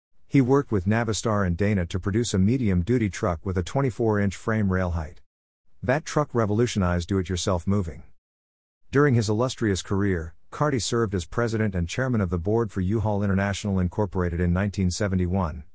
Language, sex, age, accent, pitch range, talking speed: English, male, 50-69, American, 90-115 Hz, 155 wpm